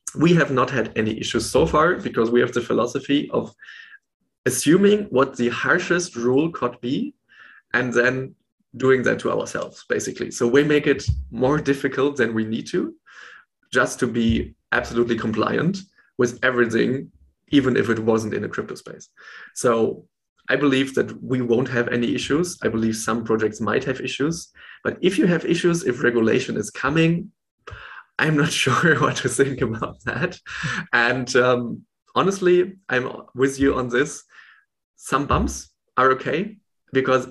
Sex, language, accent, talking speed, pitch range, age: male, English, German, 160 wpm, 120-150 Hz, 20-39